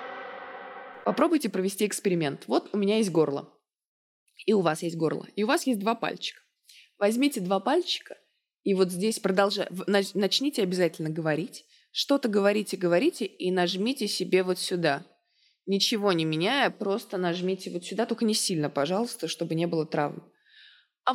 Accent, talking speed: native, 150 wpm